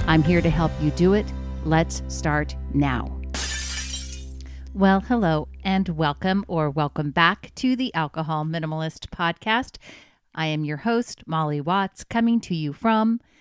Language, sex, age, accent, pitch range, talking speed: English, female, 40-59, American, 150-180 Hz, 145 wpm